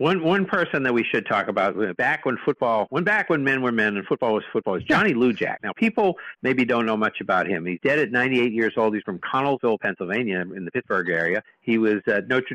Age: 50-69